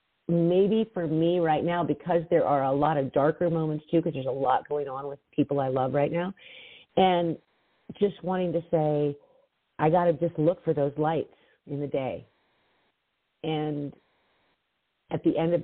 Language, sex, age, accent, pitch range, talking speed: English, female, 40-59, American, 150-205 Hz, 180 wpm